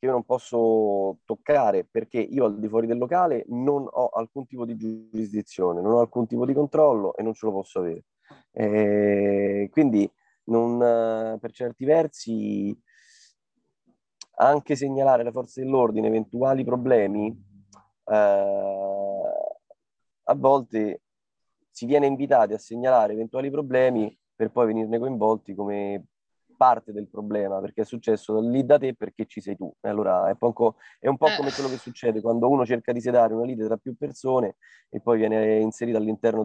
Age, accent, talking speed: 30-49, native, 155 wpm